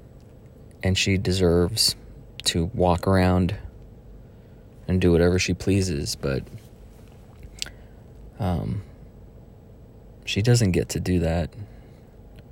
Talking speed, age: 90 wpm, 30-49